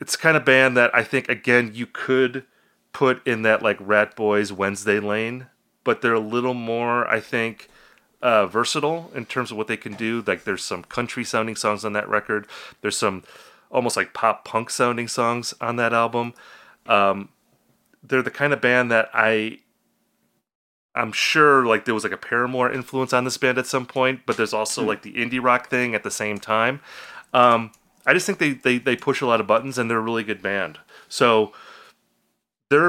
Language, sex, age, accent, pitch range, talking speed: English, male, 30-49, American, 110-135 Hz, 200 wpm